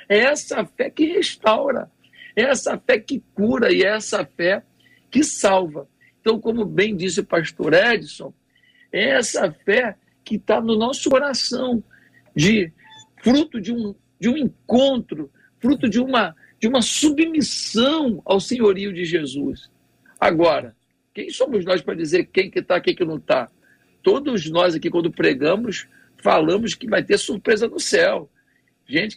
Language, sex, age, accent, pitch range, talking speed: Portuguese, male, 60-79, Brazilian, 185-265 Hz, 150 wpm